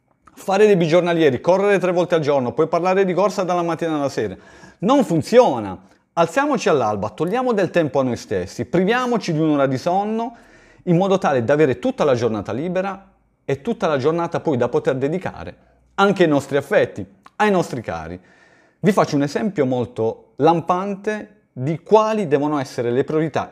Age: 40-59